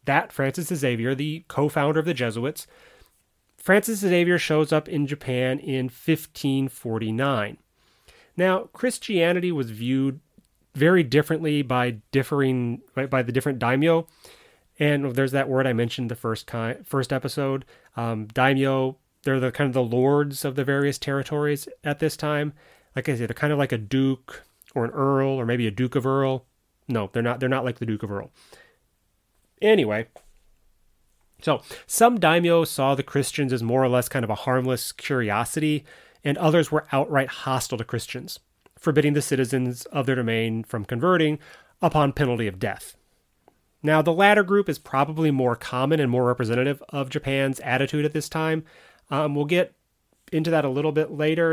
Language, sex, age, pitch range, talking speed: English, male, 30-49, 125-155 Hz, 170 wpm